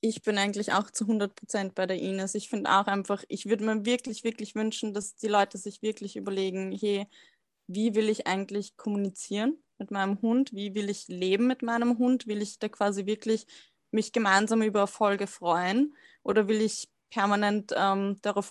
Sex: female